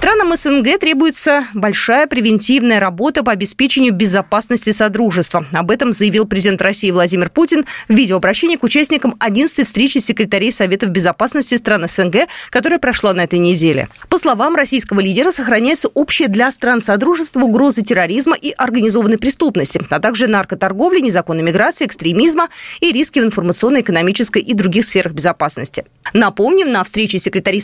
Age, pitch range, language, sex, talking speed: 20-39, 195-295 Hz, Russian, female, 145 wpm